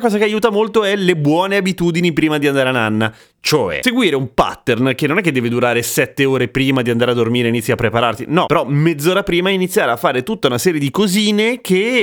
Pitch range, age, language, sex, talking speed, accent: 115-160 Hz, 30-49, Italian, male, 235 wpm, native